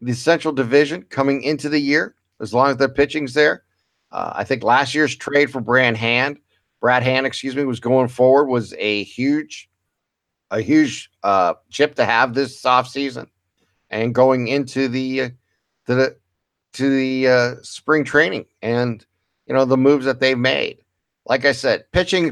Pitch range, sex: 110-140 Hz, male